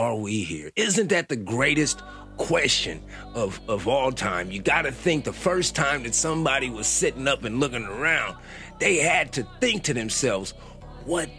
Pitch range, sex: 115-165 Hz, male